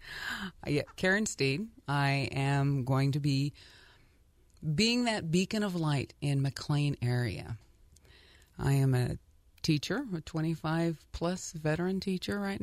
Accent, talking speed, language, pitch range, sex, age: American, 120 wpm, English, 115-160 Hz, female, 30-49